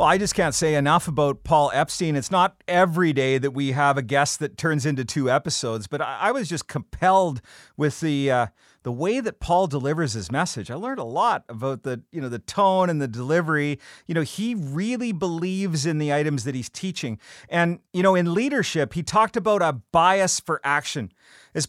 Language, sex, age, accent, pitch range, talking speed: English, male, 40-59, American, 145-190 Hz, 210 wpm